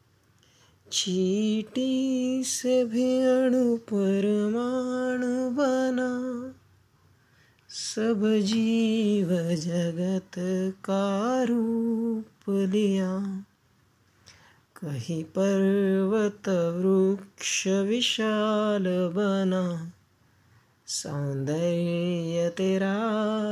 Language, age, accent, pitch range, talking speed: Marathi, 30-49, native, 155-215 Hz, 50 wpm